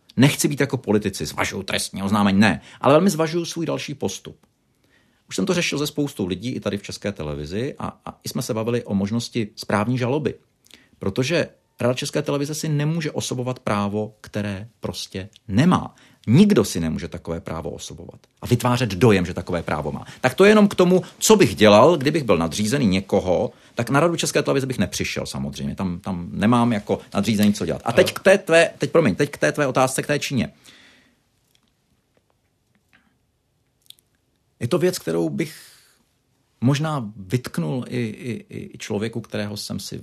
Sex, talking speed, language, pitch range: male, 175 wpm, Czech, 100-145 Hz